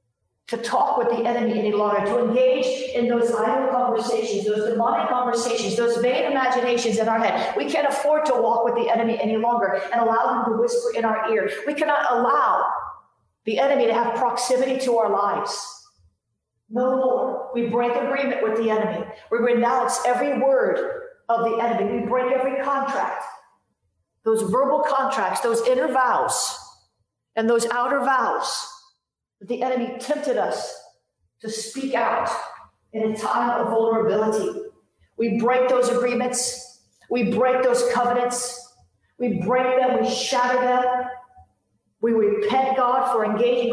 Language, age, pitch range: English, 50-69, 225-255 Hz